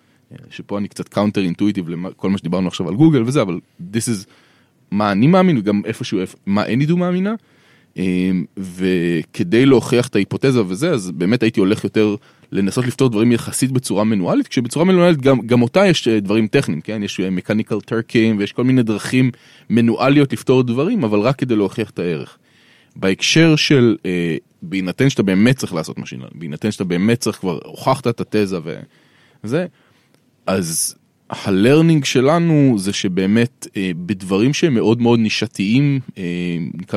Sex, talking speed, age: male, 155 wpm, 20-39